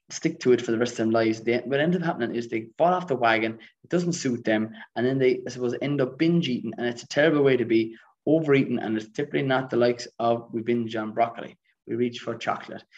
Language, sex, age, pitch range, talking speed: English, male, 20-39, 115-130 Hz, 260 wpm